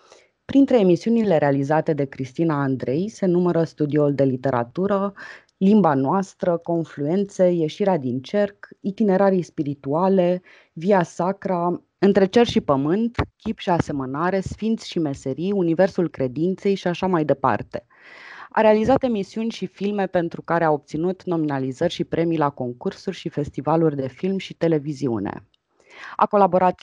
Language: Romanian